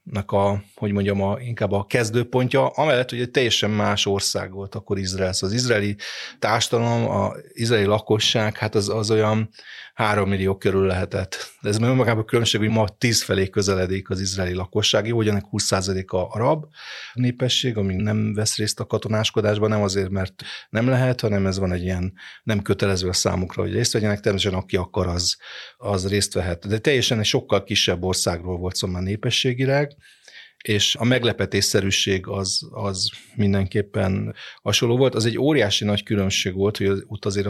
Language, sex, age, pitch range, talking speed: Hungarian, male, 30-49, 95-115 Hz, 170 wpm